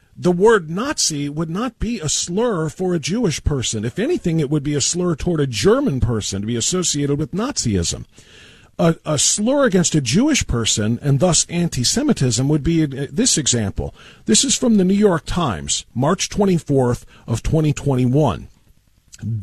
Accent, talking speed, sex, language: American, 165 wpm, male, English